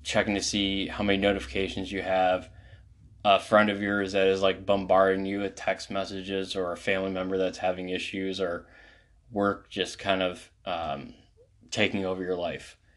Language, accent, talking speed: English, American, 170 wpm